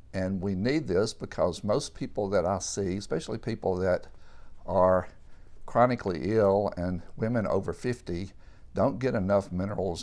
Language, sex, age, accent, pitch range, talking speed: English, male, 60-79, American, 80-105 Hz, 145 wpm